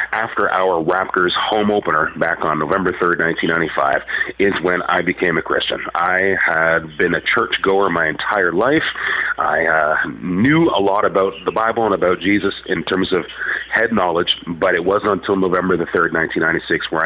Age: 30-49